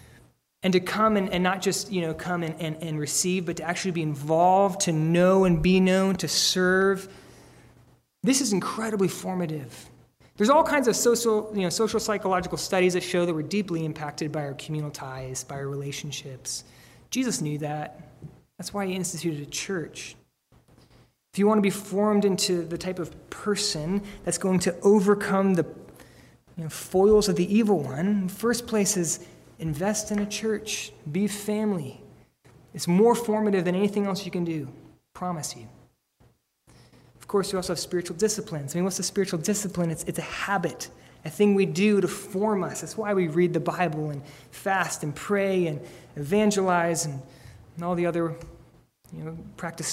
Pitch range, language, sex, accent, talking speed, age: 160-200 Hz, English, male, American, 180 wpm, 20-39